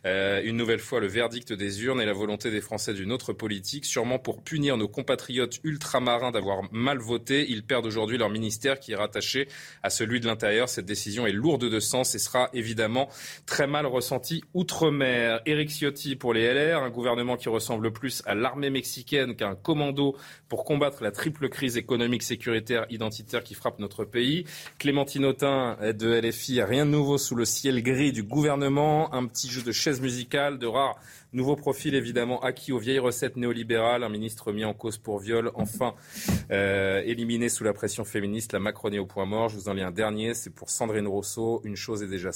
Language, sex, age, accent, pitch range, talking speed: French, male, 30-49, French, 110-135 Hz, 200 wpm